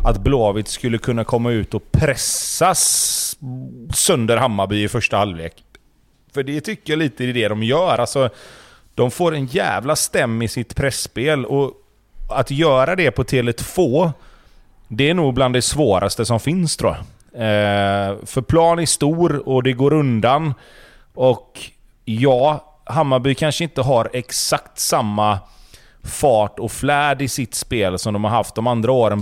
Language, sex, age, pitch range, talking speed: Swedish, male, 30-49, 110-140 Hz, 160 wpm